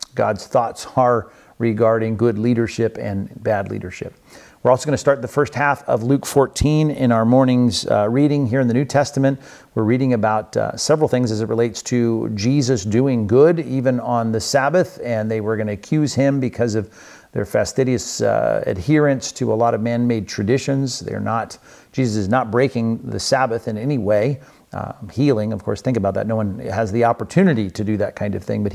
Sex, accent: male, American